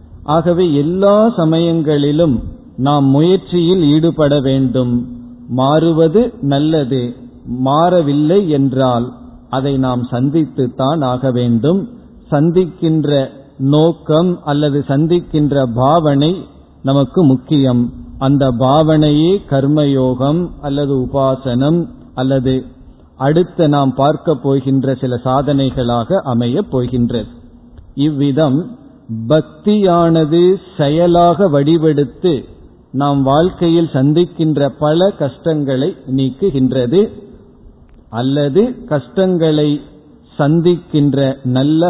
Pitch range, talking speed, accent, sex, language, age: 130-165 Hz, 70 wpm, native, male, Tamil, 50-69